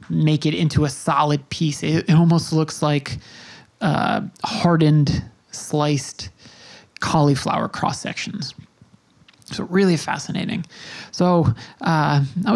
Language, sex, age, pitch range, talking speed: English, male, 20-39, 145-170 Hz, 110 wpm